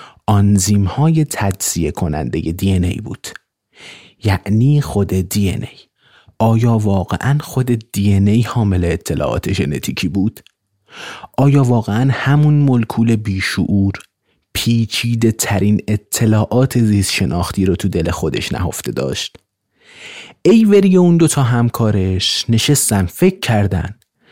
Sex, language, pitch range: male, Persian, 100-140 Hz